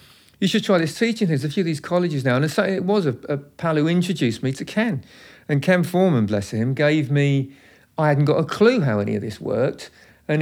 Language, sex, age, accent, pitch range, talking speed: English, male, 50-69, British, 120-150 Hz, 240 wpm